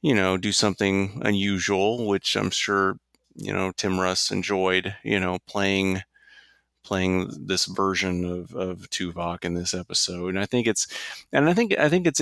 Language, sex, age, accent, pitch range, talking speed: English, male, 30-49, American, 95-105 Hz, 170 wpm